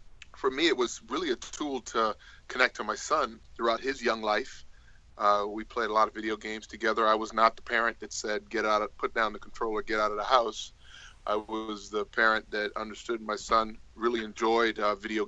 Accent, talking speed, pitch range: American, 220 wpm, 110-130 Hz